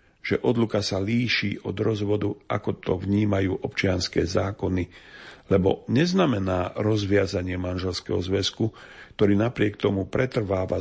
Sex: male